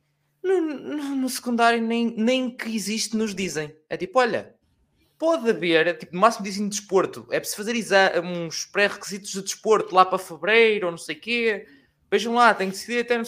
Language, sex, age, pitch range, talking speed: Portuguese, male, 20-39, 130-220 Hz, 205 wpm